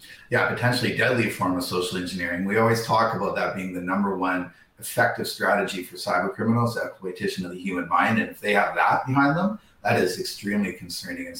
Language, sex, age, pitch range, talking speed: English, male, 30-49, 95-120 Hz, 205 wpm